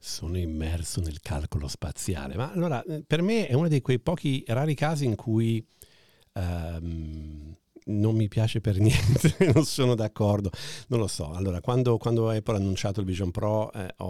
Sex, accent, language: male, native, Italian